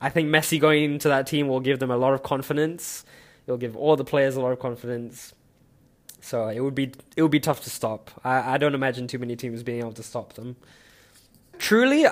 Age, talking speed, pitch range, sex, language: 10-29, 235 wpm, 120-145 Hz, male, English